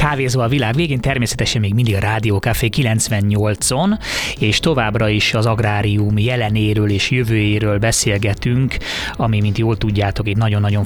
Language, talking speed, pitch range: Hungarian, 140 wpm, 105-125 Hz